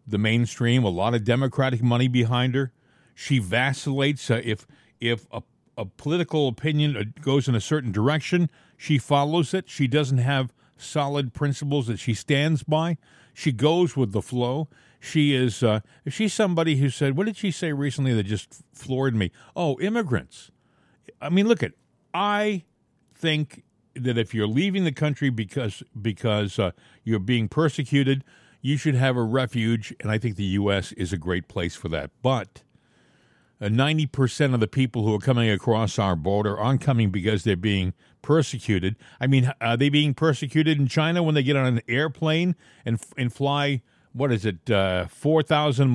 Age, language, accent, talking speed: 50-69, English, American, 175 wpm